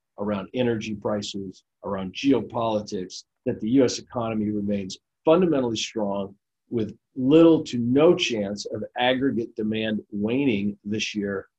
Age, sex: 50-69, male